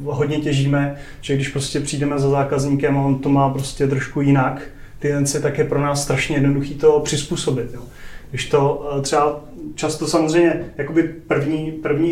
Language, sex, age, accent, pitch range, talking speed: Czech, male, 30-49, native, 140-175 Hz, 175 wpm